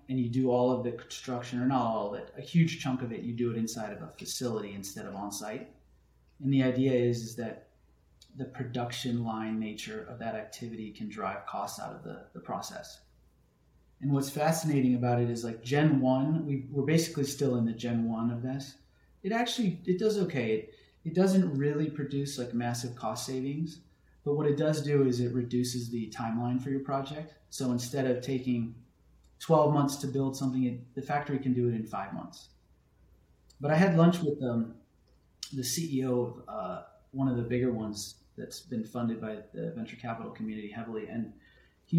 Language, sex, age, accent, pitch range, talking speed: English, male, 30-49, American, 115-140 Hz, 195 wpm